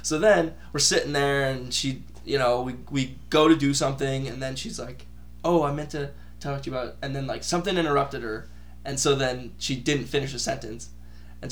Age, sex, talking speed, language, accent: 10-29, male, 225 wpm, English, American